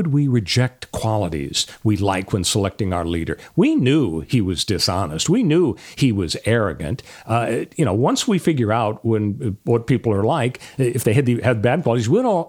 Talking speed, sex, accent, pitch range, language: 185 wpm, male, American, 105-150 Hz, English